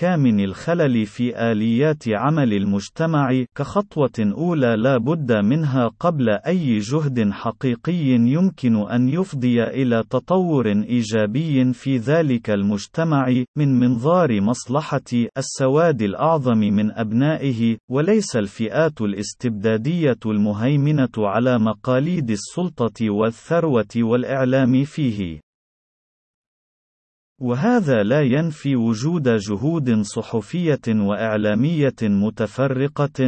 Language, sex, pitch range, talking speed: Arabic, male, 110-145 Hz, 90 wpm